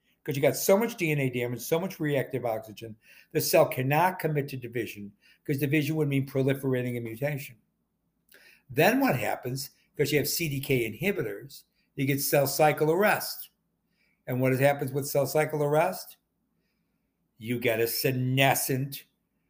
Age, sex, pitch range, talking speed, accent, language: 60-79, male, 125-155 Hz, 150 wpm, American, English